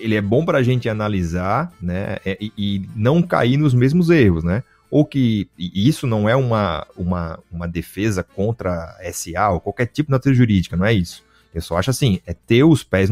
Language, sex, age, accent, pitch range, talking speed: Portuguese, male, 30-49, Brazilian, 95-135 Hz, 205 wpm